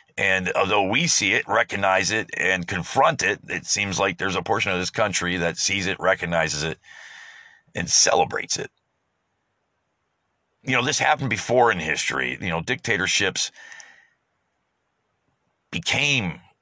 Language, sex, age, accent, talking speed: English, male, 50-69, American, 135 wpm